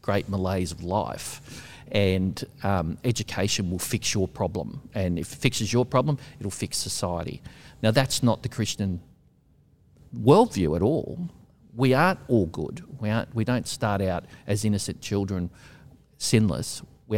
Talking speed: 145 wpm